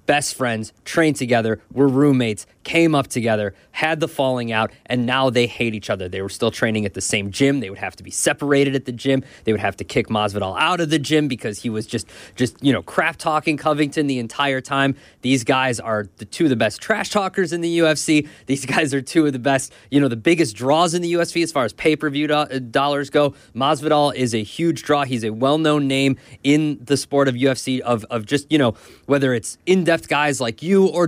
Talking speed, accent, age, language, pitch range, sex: 225 wpm, American, 20-39, English, 115-150 Hz, male